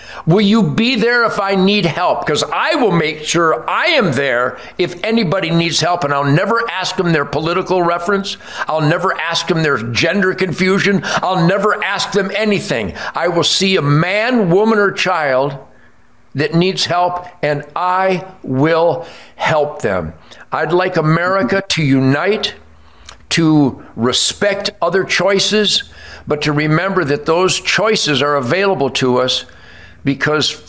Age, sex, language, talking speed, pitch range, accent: 50-69, male, English, 150 wpm, 135-180 Hz, American